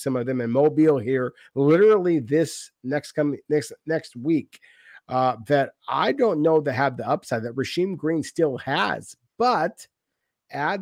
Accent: American